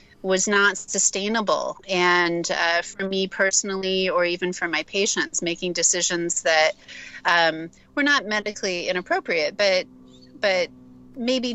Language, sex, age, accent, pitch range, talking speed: English, female, 30-49, American, 175-205 Hz, 125 wpm